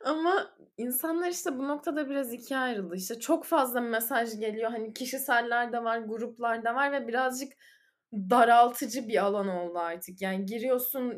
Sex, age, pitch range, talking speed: female, 10-29, 210-275 Hz, 155 wpm